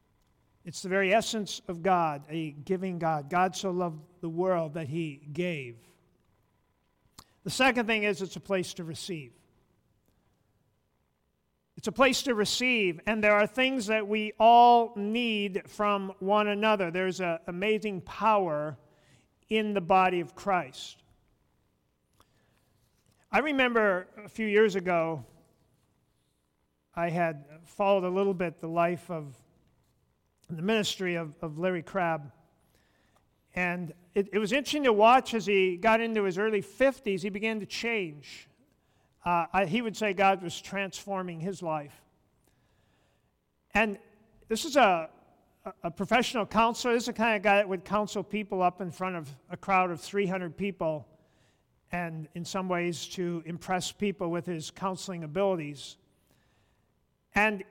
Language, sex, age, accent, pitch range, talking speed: English, male, 50-69, American, 165-210 Hz, 145 wpm